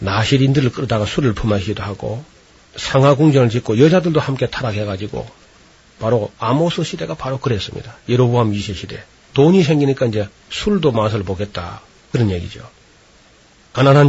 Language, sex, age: Korean, male, 40-59